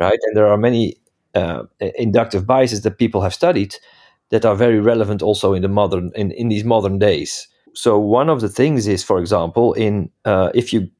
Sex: male